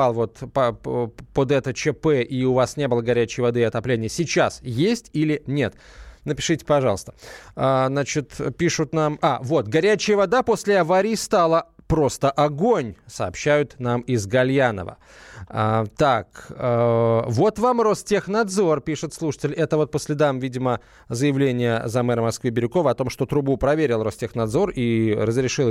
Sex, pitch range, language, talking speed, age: male, 125-165 Hz, Russian, 140 wpm, 20-39